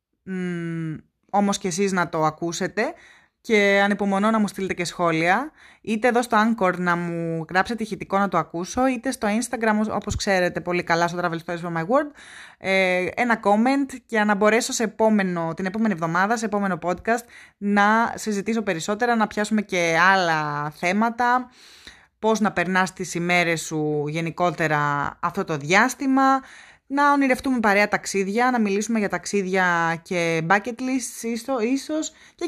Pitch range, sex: 180-245 Hz, female